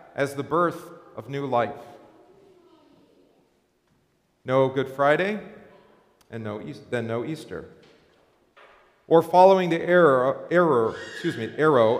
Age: 40-59